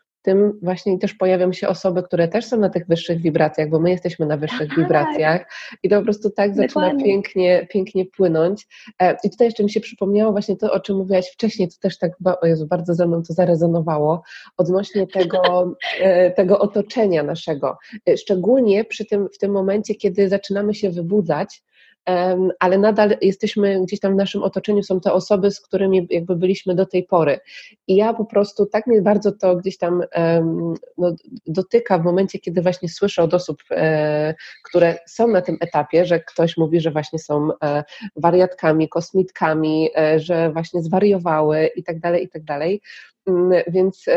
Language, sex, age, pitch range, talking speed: Polish, female, 30-49, 170-200 Hz, 170 wpm